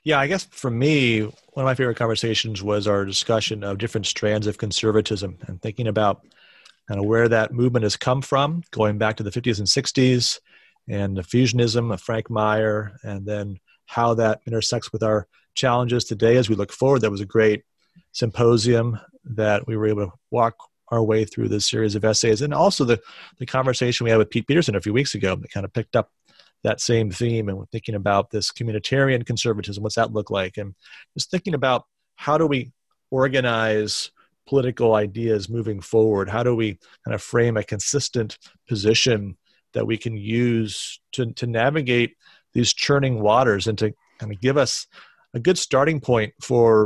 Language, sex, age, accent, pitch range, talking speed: English, male, 30-49, American, 105-125 Hz, 190 wpm